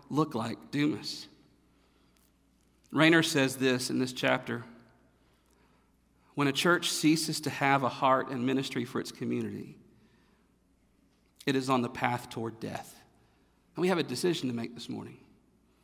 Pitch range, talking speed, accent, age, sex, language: 125-155 Hz, 145 wpm, American, 40-59, male, English